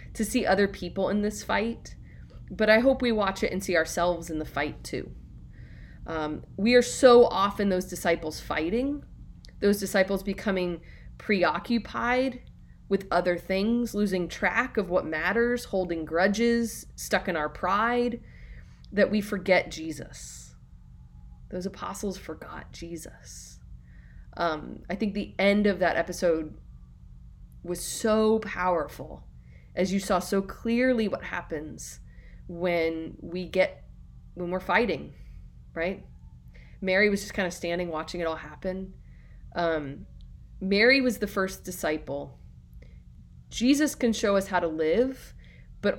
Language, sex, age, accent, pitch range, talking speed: English, female, 30-49, American, 155-205 Hz, 135 wpm